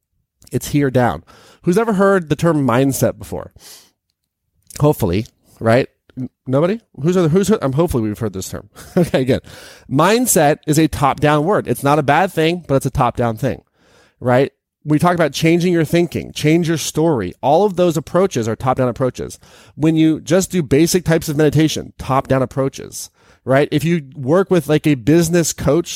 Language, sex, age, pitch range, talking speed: English, male, 30-49, 125-165 Hz, 185 wpm